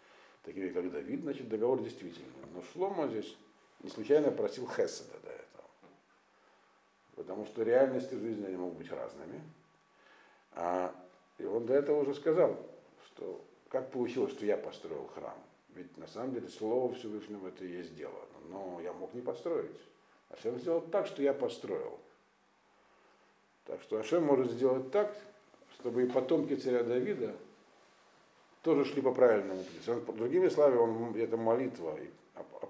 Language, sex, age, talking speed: Russian, male, 50-69, 150 wpm